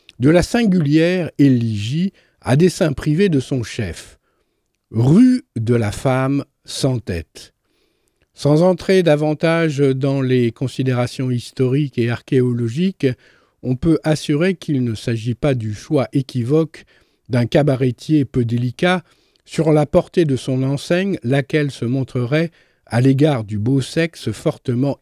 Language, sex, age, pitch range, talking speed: French, male, 50-69, 125-165 Hz, 130 wpm